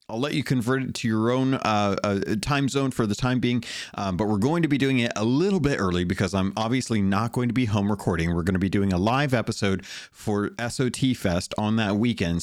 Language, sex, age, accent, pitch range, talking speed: English, male, 30-49, American, 100-130 Hz, 245 wpm